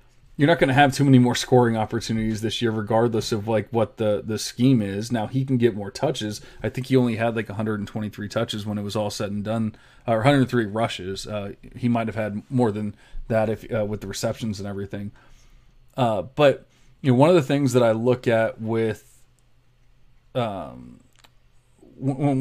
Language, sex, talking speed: English, male, 195 wpm